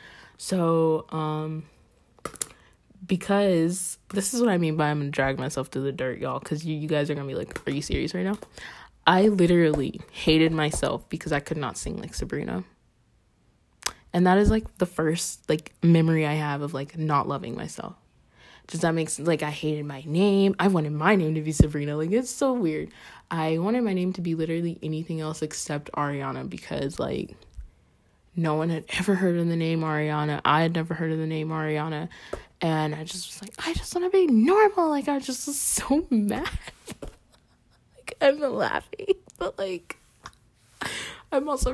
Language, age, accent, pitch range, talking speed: English, 20-39, American, 155-200 Hz, 190 wpm